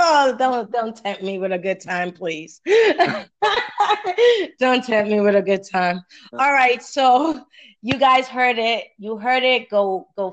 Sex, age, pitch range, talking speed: female, 20-39, 205-275 Hz, 170 wpm